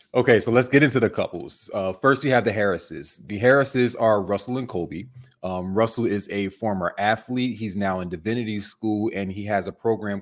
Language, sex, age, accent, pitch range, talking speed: English, male, 20-39, American, 90-110 Hz, 205 wpm